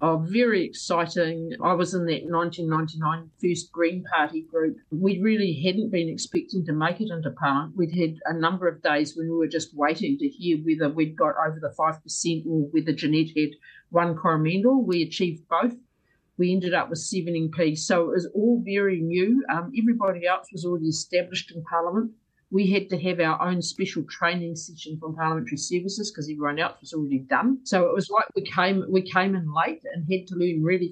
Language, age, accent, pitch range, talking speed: English, 50-69, Australian, 155-185 Hz, 200 wpm